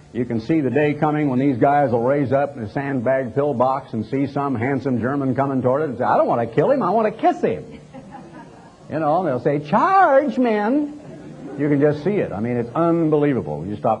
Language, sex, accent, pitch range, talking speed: English, male, American, 125-170 Hz, 235 wpm